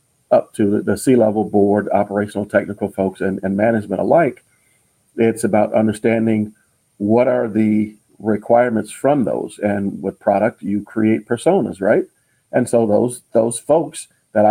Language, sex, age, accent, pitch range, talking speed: English, male, 50-69, American, 100-115 Hz, 140 wpm